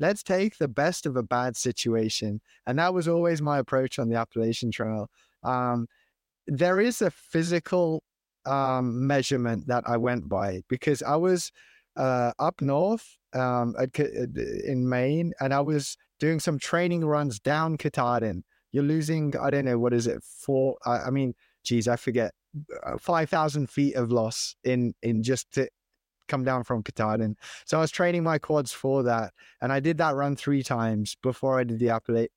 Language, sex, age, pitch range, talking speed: English, male, 20-39, 120-155 Hz, 175 wpm